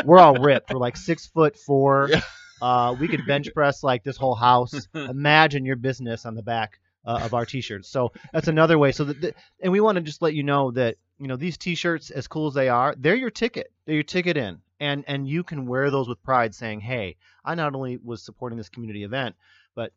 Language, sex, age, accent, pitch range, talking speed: English, male, 30-49, American, 105-135 Hz, 235 wpm